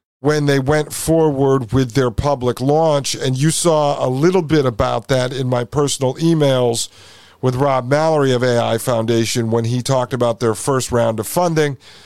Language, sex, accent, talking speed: English, male, American, 175 wpm